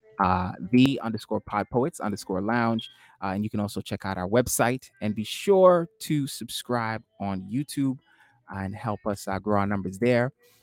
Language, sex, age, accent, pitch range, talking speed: English, male, 30-49, American, 105-145 Hz, 175 wpm